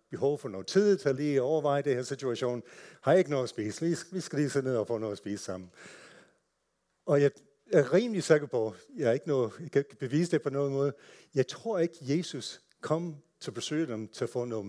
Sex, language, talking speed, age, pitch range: male, Danish, 235 wpm, 60-79, 110-155 Hz